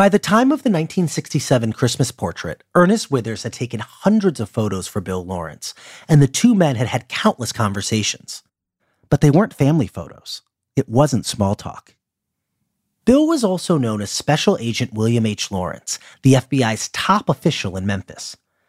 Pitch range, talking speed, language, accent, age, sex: 115-190 Hz, 165 wpm, English, American, 40-59, male